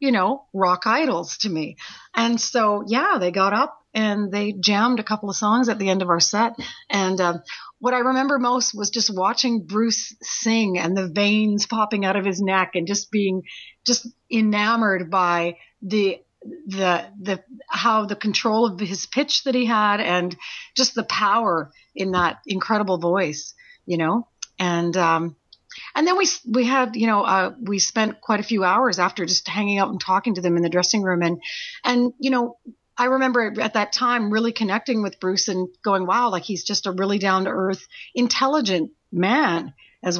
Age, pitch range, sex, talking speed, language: 40-59, 190-240 Hz, female, 190 wpm, English